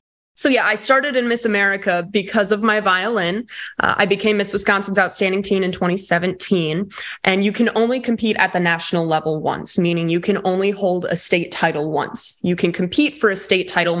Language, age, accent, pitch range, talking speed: English, 20-39, American, 175-215 Hz, 195 wpm